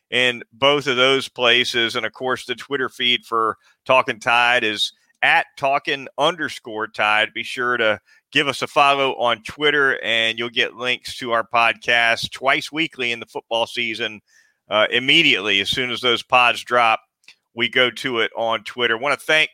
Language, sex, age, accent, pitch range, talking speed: English, male, 40-59, American, 125-160 Hz, 180 wpm